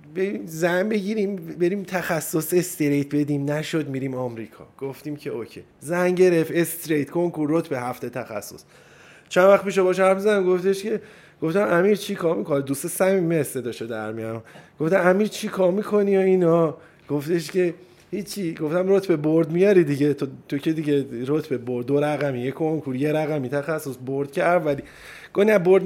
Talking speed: 165 wpm